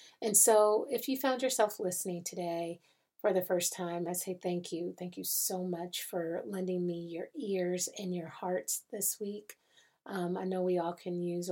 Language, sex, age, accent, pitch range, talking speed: English, female, 40-59, American, 180-205 Hz, 195 wpm